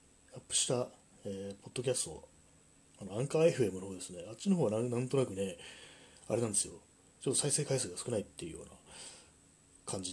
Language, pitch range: Japanese, 95-120 Hz